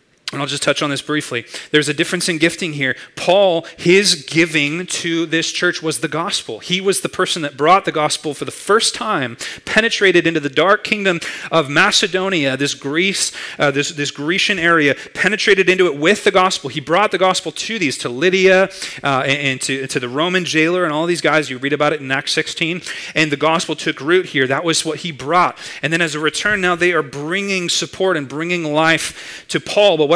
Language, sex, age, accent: English, male, 30-49, American